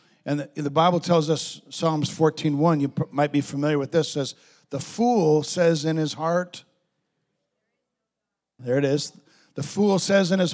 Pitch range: 140-170 Hz